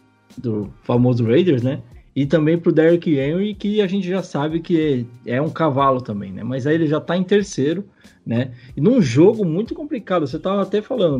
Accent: Brazilian